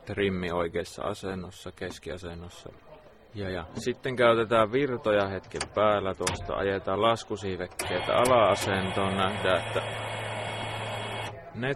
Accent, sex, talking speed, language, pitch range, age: native, male, 90 wpm, Finnish, 90-105 Hz, 20-39